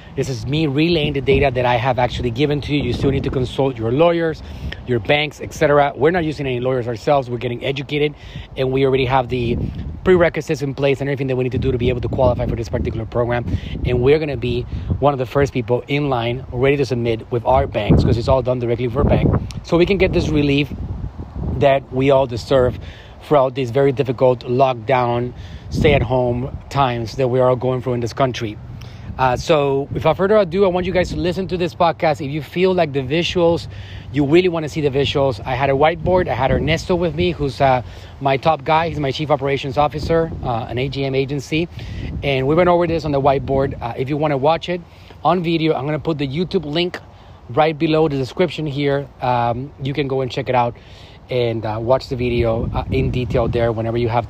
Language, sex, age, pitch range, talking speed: English, male, 30-49, 120-150 Hz, 230 wpm